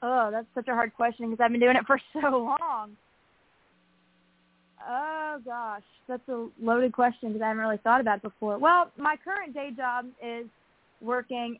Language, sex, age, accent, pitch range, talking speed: English, female, 20-39, American, 210-250 Hz, 180 wpm